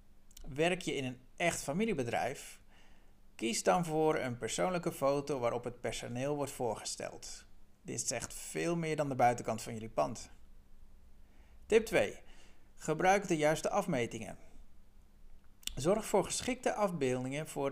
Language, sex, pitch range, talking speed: Dutch, male, 120-165 Hz, 130 wpm